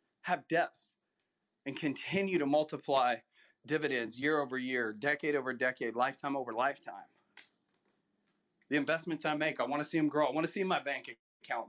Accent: American